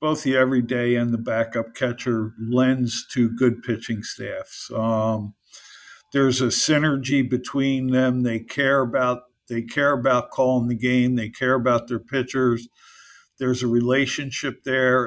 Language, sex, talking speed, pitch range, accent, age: English, male, 145 wpm, 115-130 Hz, American, 50-69